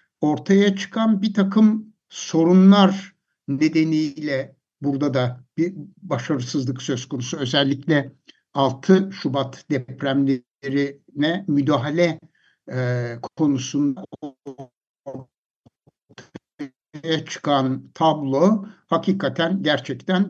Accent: native